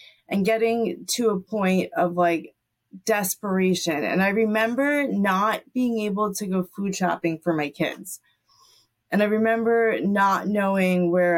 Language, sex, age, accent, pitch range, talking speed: English, female, 30-49, American, 170-225 Hz, 140 wpm